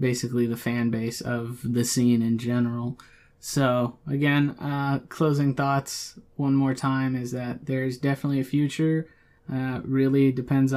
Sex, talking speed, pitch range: male, 145 wpm, 130-160 Hz